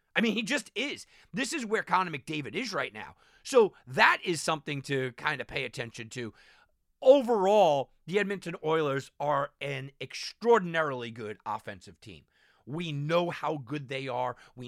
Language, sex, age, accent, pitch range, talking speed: English, male, 40-59, American, 135-195 Hz, 165 wpm